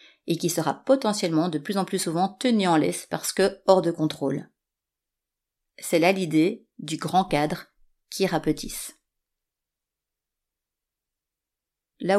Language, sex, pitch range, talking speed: French, female, 160-205 Hz, 130 wpm